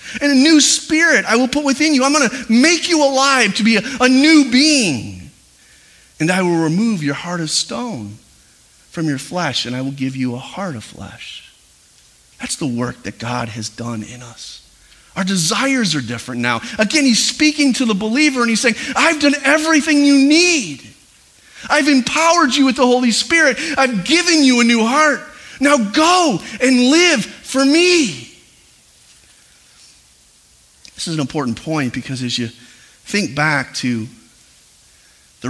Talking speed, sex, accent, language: 170 wpm, male, American, English